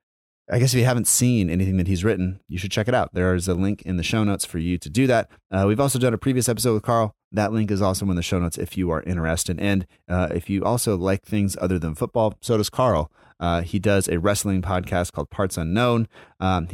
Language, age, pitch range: English, 30-49, 85-105 Hz